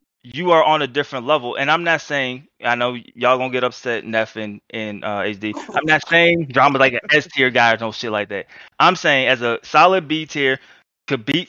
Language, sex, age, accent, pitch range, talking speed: English, male, 20-39, American, 125-160 Hz, 225 wpm